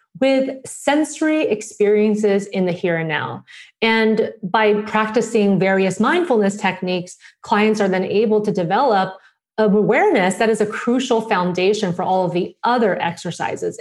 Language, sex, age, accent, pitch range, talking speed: English, female, 30-49, American, 175-215 Hz, 140 wpm